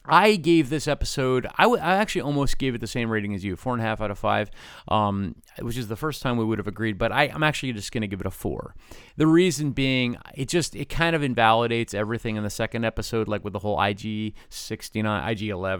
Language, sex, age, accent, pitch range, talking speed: English, male, 30-49, American, 105-135 Hz, 245 wpm